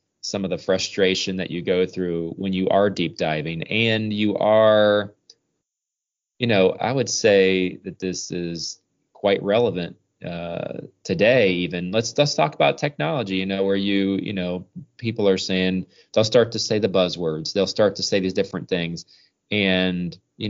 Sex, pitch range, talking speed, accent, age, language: male, 85-100 Hz, 170 wpm, American, 20-39, English